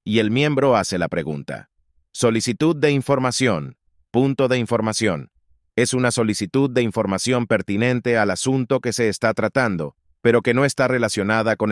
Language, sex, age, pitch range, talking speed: Spanish, male, 30-49, 100-125 Hz, 155 wpm